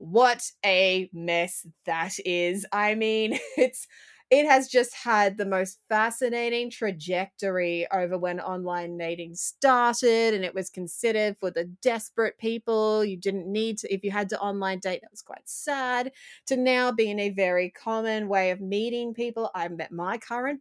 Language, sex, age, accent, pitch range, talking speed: English, female, 30-49, Australian, 175-225 Hz, 165 wpm